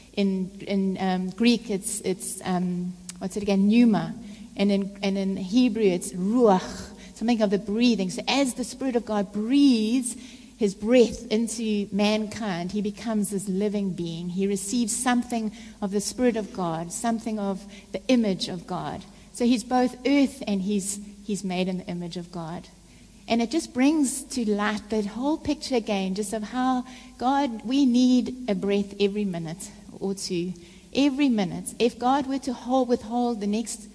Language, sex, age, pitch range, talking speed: English, female, 60-79, 190-235 Hz, 170 wpm